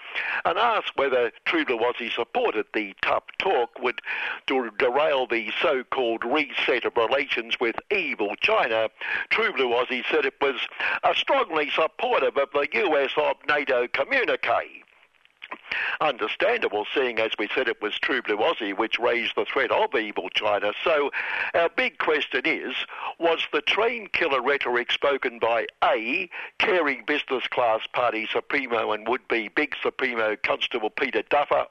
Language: English